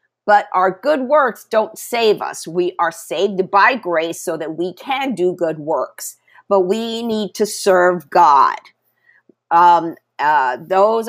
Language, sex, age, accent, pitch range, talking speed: English, female, 50-69, American, 175-220 Hz, 150 wpm